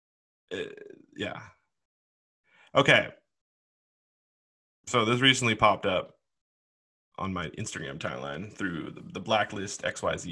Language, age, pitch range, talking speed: English, 20-39, 105-125 Hz, 100 wpm